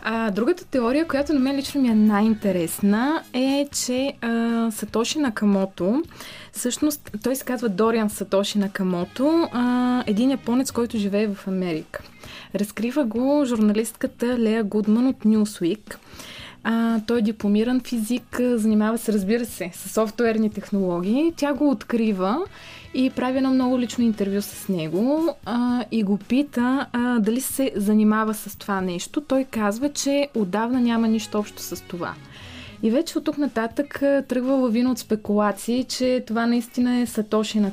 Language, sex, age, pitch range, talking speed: Bulgarian, female, 20-39, 210-250 Hz, 150 wpm